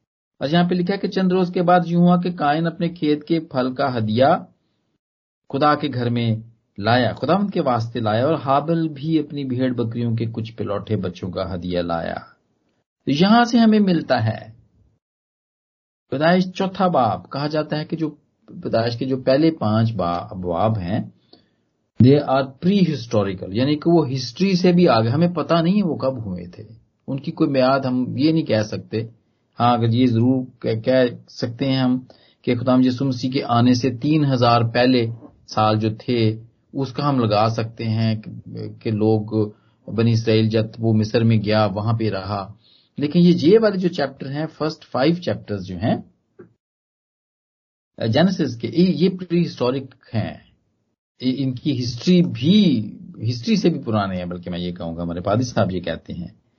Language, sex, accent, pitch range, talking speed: Hindi, male, native, 110-155 Hz, 170 wpm